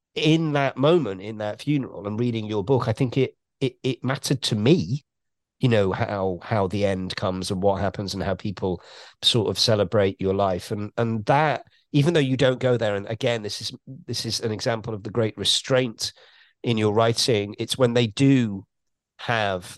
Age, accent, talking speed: 40-59, British, 195 wpm